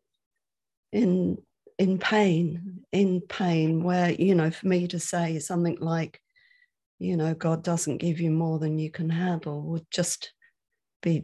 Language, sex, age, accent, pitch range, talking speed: English, female, 50-69, British, 170-195 Hz, 150 wpm